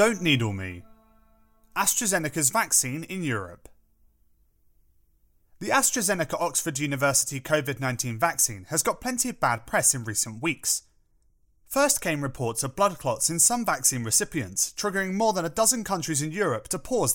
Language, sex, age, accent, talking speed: English, male, 30-49, British, 150 wpm